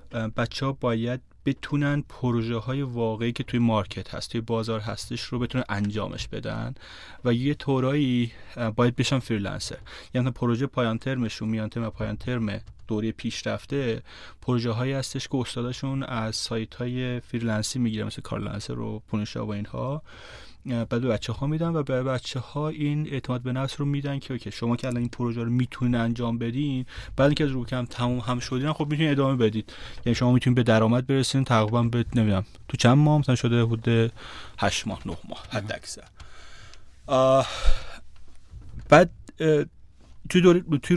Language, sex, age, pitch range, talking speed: Persian, male, 30-49, 115-140 Hz, 165 wpm